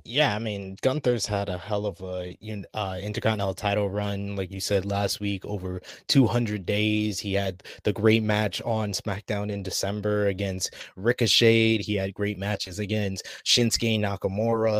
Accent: American